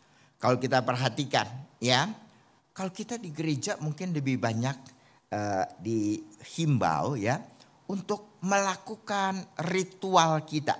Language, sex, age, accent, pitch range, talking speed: Indonesian, male, 50-69, native, 100-155 Hz, 100 wpm